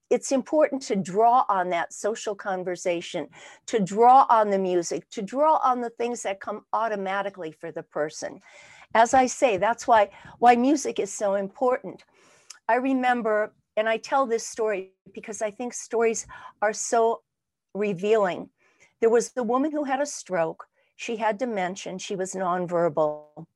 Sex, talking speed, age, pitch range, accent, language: female, 160 wpm, 50-69, 195-250 Hz, American, English